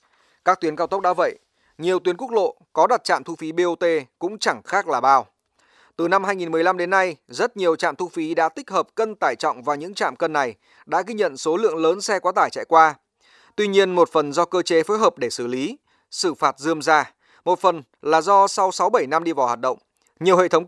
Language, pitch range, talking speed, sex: Vietnamese, 165-245 Hz, 240 wpm, male